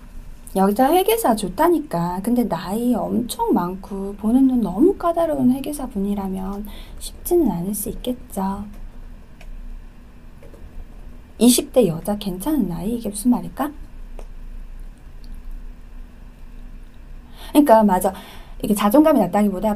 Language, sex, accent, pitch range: Korean, female, native, 185-255 Hz